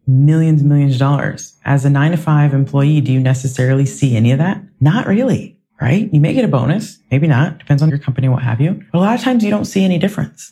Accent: American